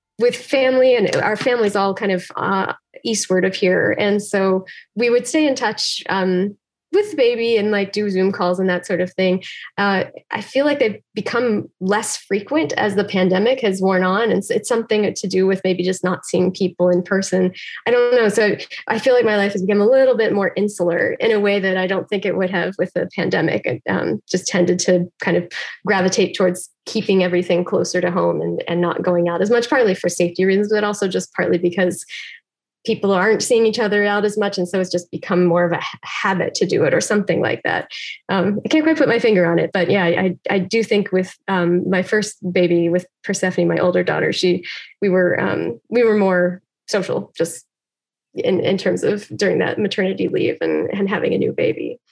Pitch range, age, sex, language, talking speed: 180-220 Hz, 20-39, female, English, 220 wpm